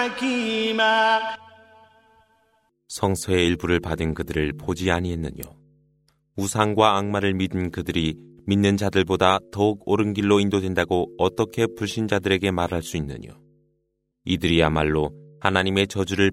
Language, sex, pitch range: Korean, male, 85-110 Hz